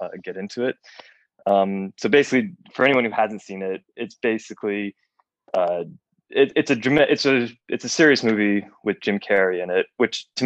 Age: 20-39